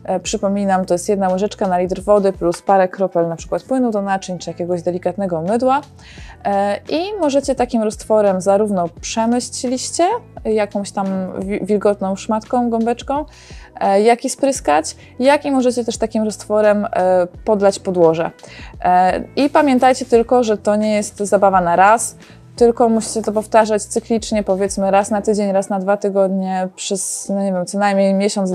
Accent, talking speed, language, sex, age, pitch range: native, 150 wpm, Polish, female, 20-39, 190-225 Hz